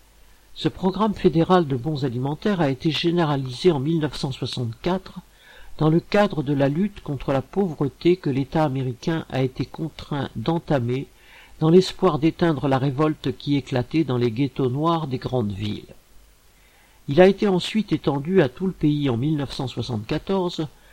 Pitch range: 130-170 Hz